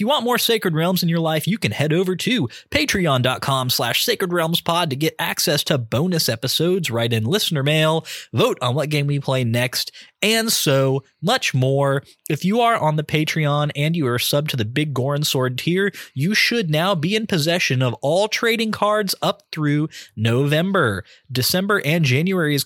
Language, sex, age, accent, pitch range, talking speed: English, male, 20-39, American, 120-170 Hz, 190 wpm